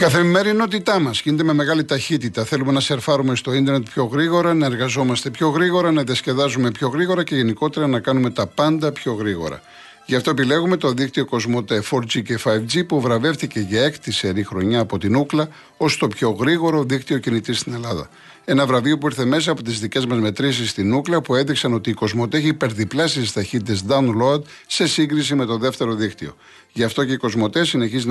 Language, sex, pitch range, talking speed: Greek, male, 110-150 Hz, 190 wpm